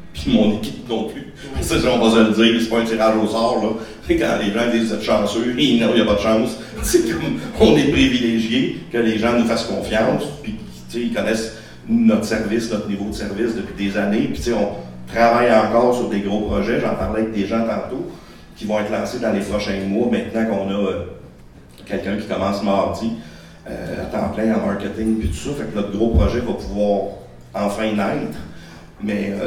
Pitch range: 100-115 Hz